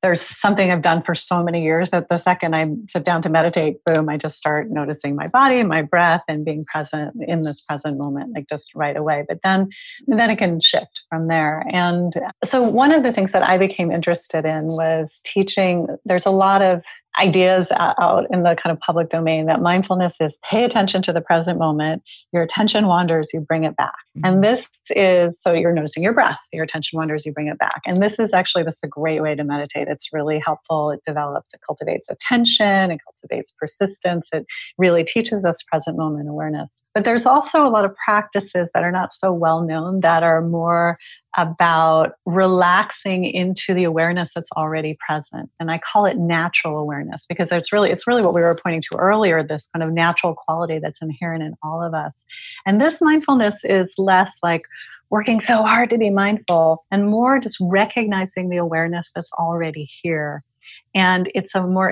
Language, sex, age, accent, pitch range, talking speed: English, female, 30-49, American, 160-195 Hz, 200 wpm